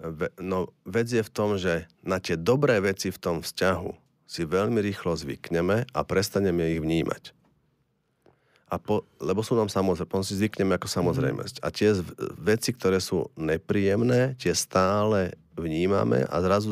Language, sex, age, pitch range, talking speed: Slovak, male, 40-59, 90-105 Hz, 155 wpm